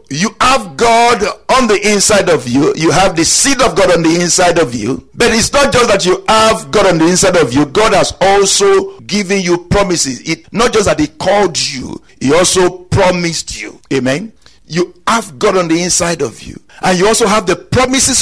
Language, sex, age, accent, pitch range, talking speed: English, male, 50-69, Nigerian, 165-230 Hz, 210 wpm